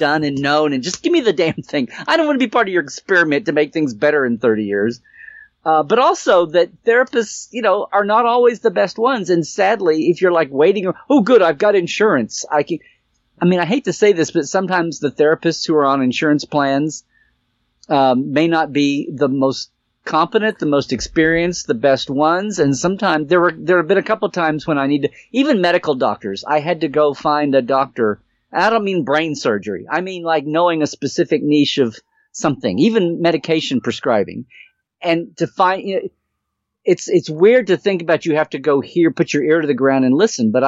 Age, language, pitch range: 40-59, English, 140-180 Hz